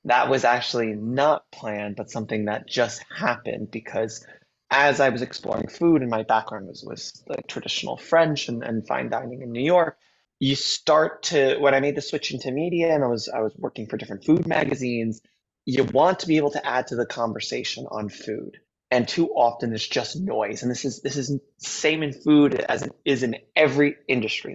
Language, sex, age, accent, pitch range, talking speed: English, male, 20-39, American, 110-135 Hz, 205 wpm